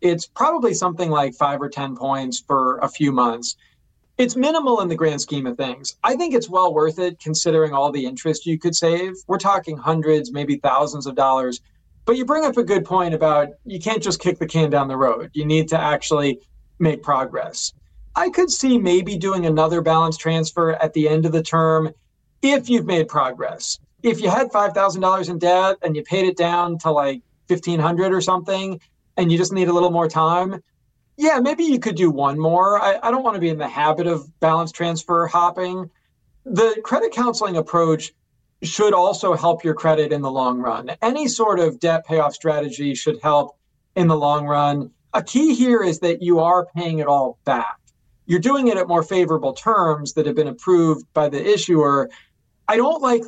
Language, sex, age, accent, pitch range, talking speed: English, male, 40-59, American, 150-185 Hz, 200 wpm